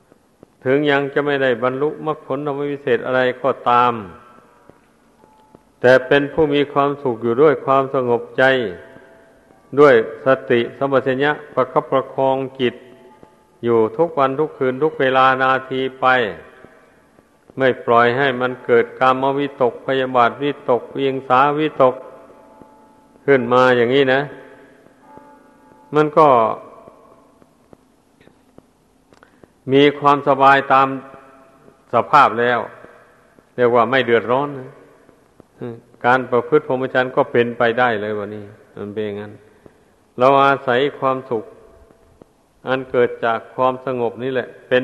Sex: male